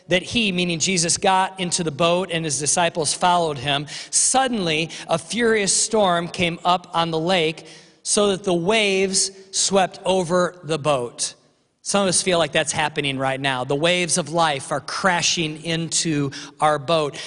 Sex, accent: male, American